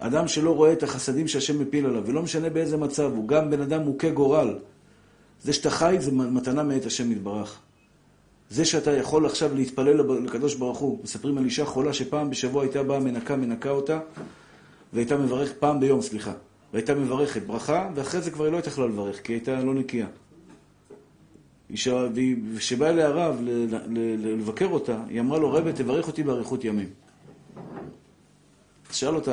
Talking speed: 175 wpm